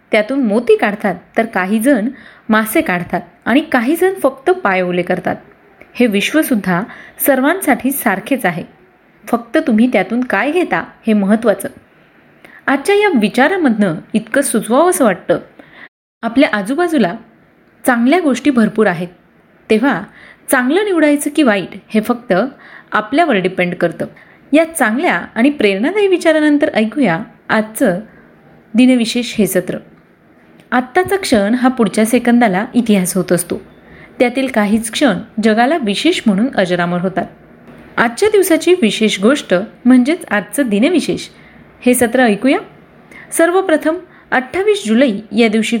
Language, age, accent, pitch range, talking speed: Marathi, 30-49, native, 210-280 Hz, 100 wpm